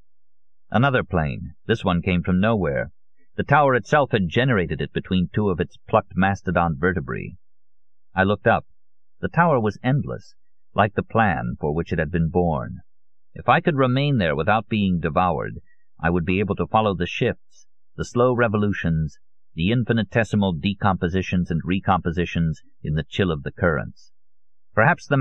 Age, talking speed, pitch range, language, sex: 50-69, 160 wpm, 85-110 Hz, English, male